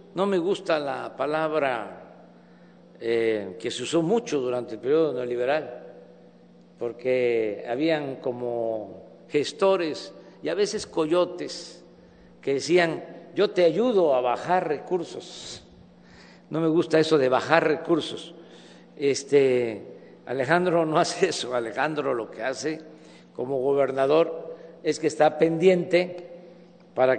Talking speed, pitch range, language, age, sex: 115 wpm, 135-180 Hz, Spanish, 50-69, male